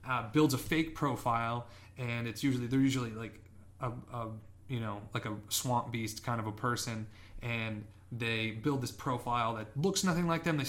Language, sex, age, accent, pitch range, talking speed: English, male, 20-39, American, 115-145 Hz, 190 wpm